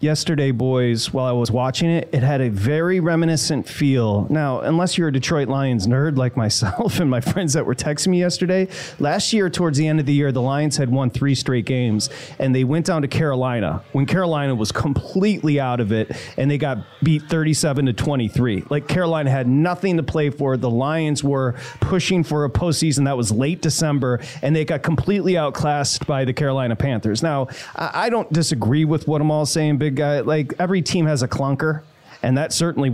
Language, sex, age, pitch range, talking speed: English, male, 30-49, 130-165 Hz, 205 wpm